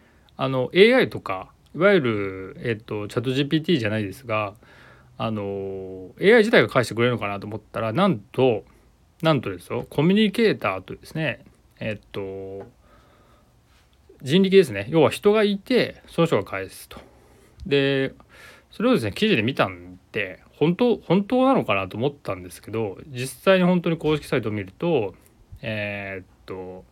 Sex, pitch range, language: male, 100-150 Hz, Japanese